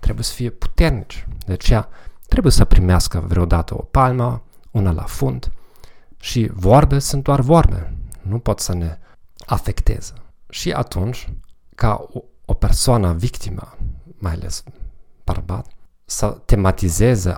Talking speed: 125 wpm